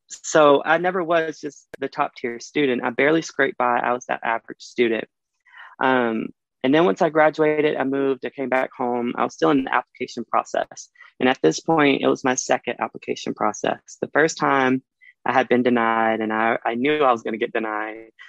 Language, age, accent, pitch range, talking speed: English, 20-39, American, 115-135 Hz, 210 wpm